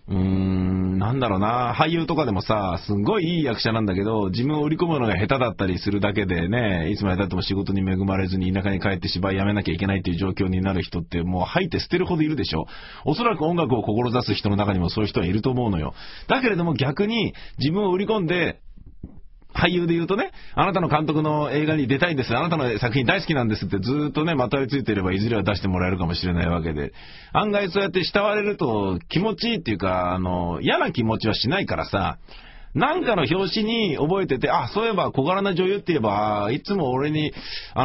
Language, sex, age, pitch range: Japanese, male, 30-49, 95-155 Hz